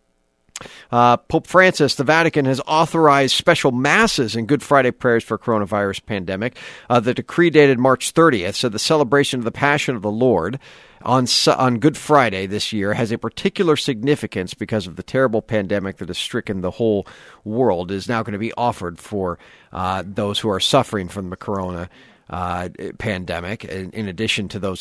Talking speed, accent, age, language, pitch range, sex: 185 wpm, American, 40-59, English, 100-130 Hz, male